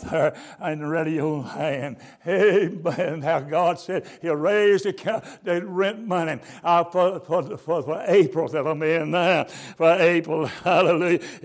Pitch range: 165-255 Hz